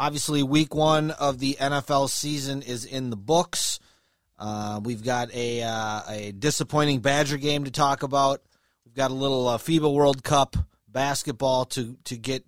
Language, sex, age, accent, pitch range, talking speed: English, male, 30-49, American, 120-145 Hz, 170 wpm